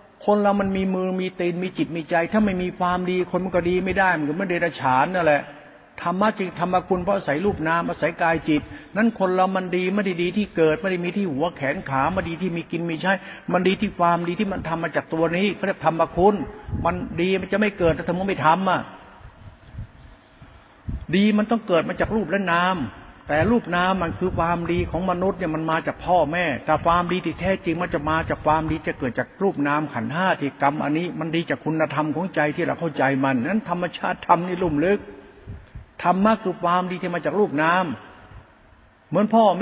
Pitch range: 155-190 Hz